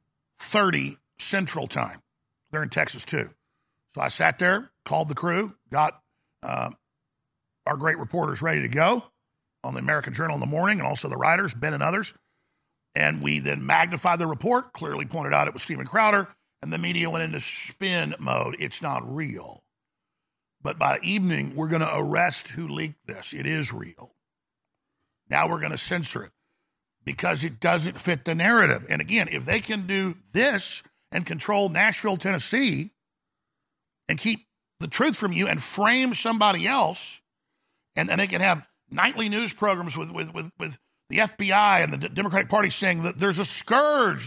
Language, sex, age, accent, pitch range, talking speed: English, male, 50-69, American, 165-225 Hz, 175 wpm